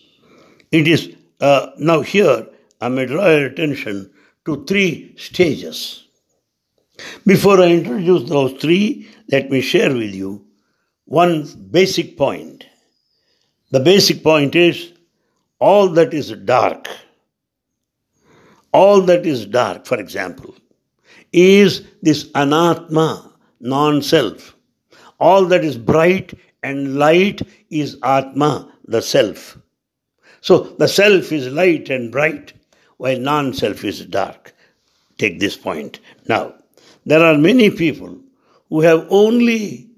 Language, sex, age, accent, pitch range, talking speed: English, male, 60-79, Indian, 150-185 Hz, 115 wpm